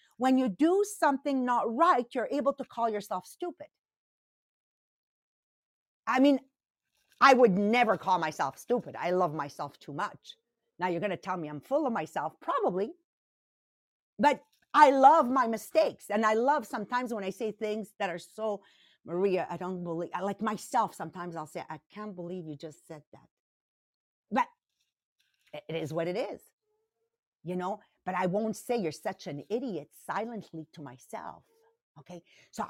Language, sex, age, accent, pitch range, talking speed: English, female, 50-69, American, 185-260 Hz, 160 wpm